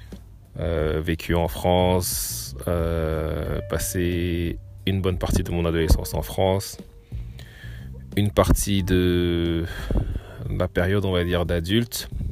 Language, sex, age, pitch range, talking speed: French, male, 30-49, 80-95 Hz, 110 wpm